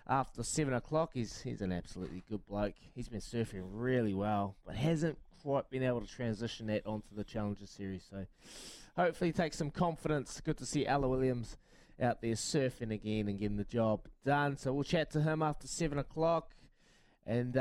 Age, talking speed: 20-39, 185 wpm